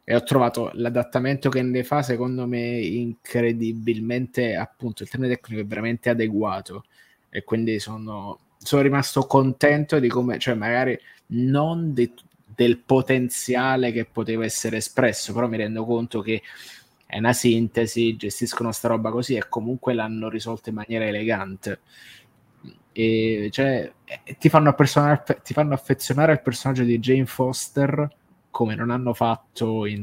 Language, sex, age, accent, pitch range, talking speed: Italian, male, 20-39, native, 110-130 Hz, 145 wpm